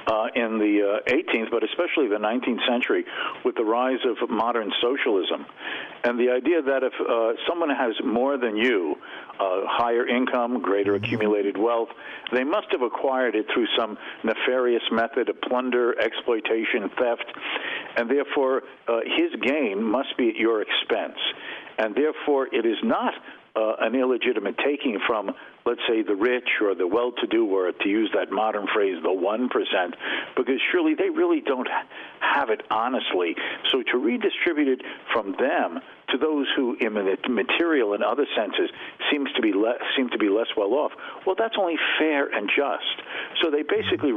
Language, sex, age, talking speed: English, male, 50-69, 165 wpm